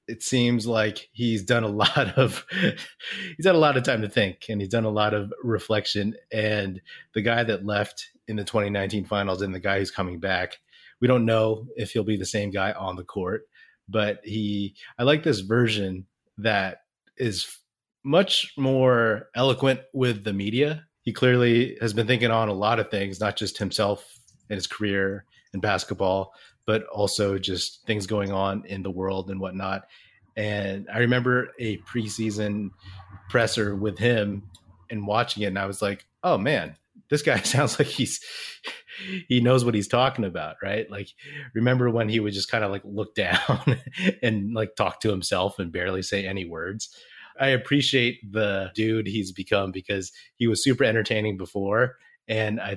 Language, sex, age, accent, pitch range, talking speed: English, male, 30-49, American, 100-120 Hz, 180 wpm